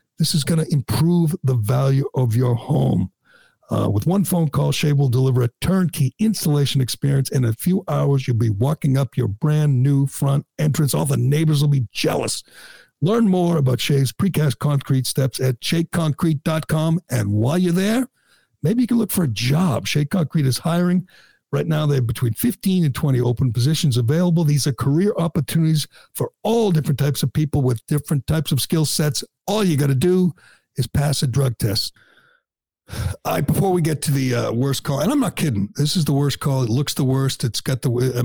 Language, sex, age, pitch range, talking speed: English, male, 60-79, 120-155 Hz, 200 wpm